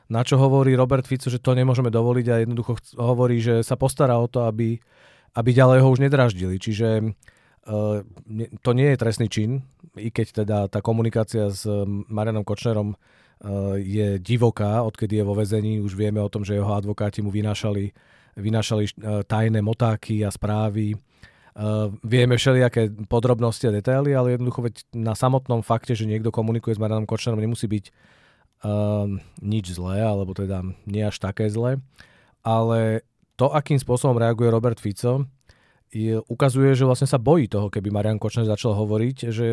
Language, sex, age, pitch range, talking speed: Czech, male, 40-59, 105-125 Hz, 155 wpm